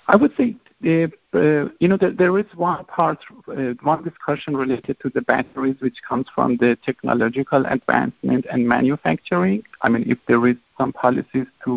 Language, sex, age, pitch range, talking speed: English, male, 50-69, 130-160 Hz, 170 wpm